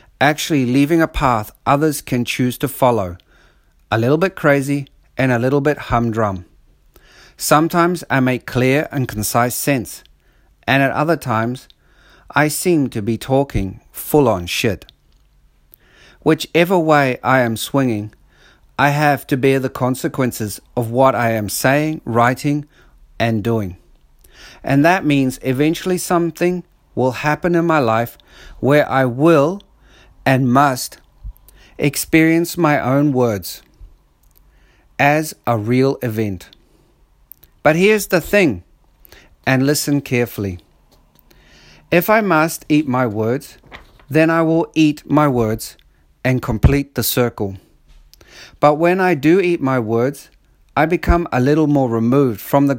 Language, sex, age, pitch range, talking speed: English, male, 50-69, 115-150 Hz, 135 wpm